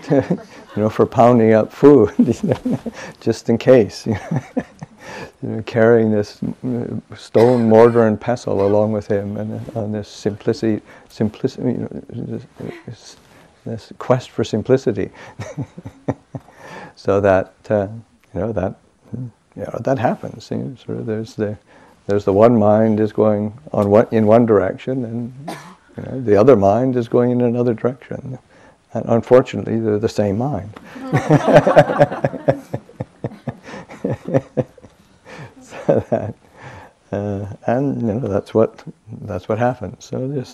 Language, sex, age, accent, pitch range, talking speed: English, male, 60-79, American, 105-125 Hz, 140 wpm